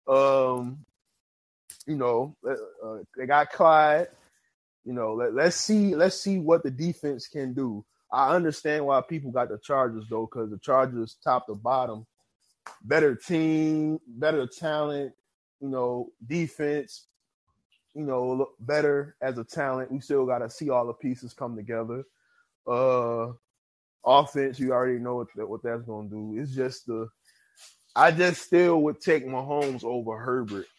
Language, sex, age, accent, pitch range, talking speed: English, male, 20-39, American, 120-150 Hz, 150 wpm